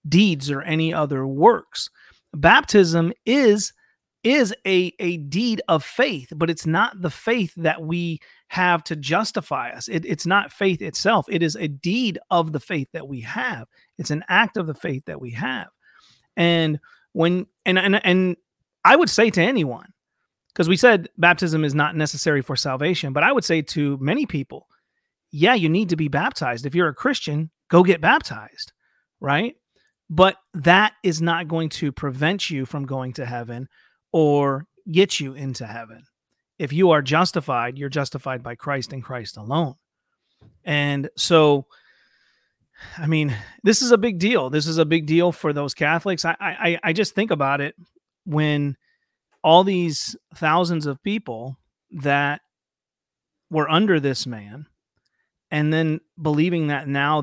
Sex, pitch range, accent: male, 145-180 Hz, American